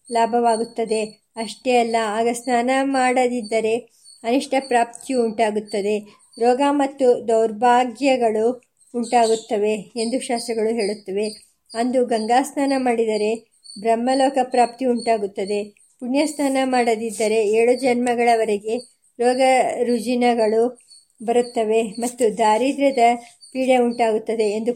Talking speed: 70 wpm